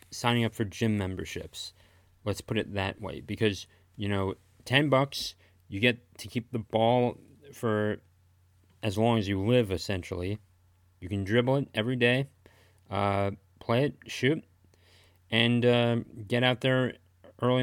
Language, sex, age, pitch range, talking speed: English, male, 30-49, 95-120 Hz, 150 wpm